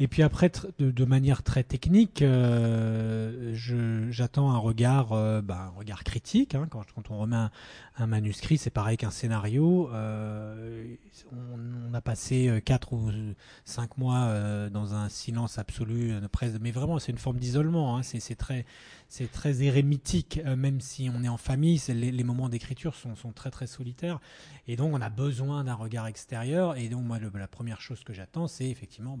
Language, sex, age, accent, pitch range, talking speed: French, male, 30-49, French, 115-140 Hz, 185 wpm